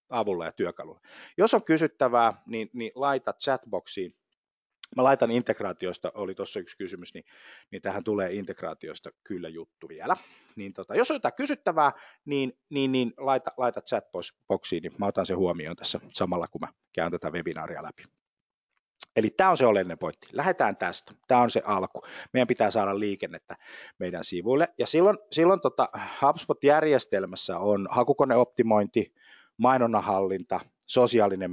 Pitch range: 100-135 Hz